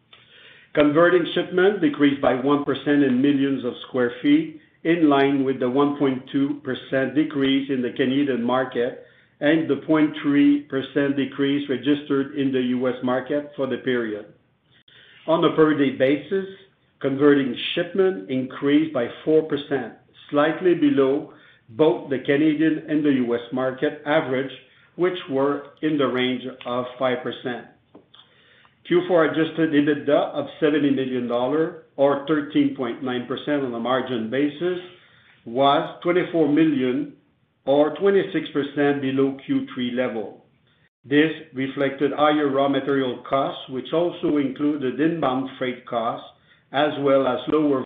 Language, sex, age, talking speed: English, male, 50-69, 120 wpm